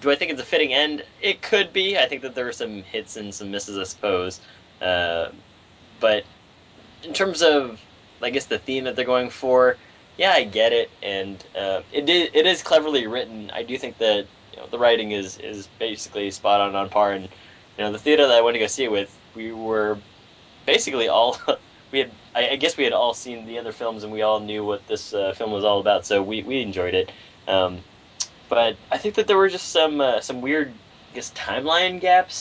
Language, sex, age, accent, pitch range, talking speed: English, male, 10-29, American, 95-130 Hz, 225 wpm